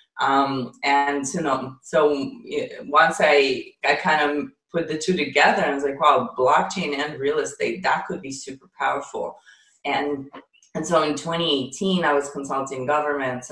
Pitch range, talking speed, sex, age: 135-170 Hz, 165 wpm, female, 20-39